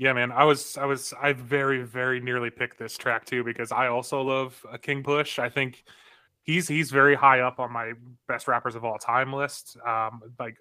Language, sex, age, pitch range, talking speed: English, male, 20-39, 120-135 Hz, 210 wpm